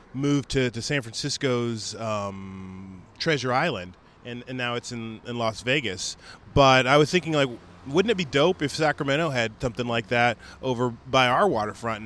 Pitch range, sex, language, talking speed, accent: 110-135 Hz, male, English, 175 wpm, American